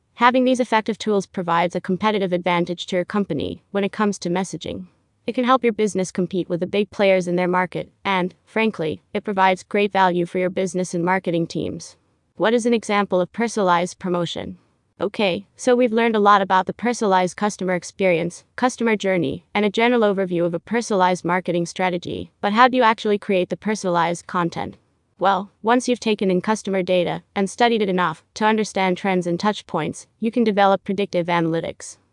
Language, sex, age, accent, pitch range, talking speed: English, female, 20-39, American, 180-215 Hz, 190 wpm